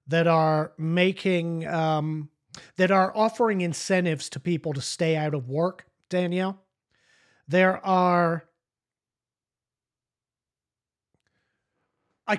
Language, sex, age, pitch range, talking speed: English, male, 40-59, 155-195 Hz, 90 wpm